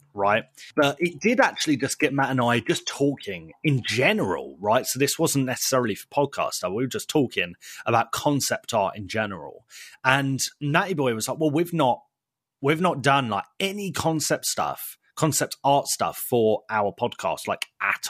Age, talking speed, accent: 30-49, 175 wpm, British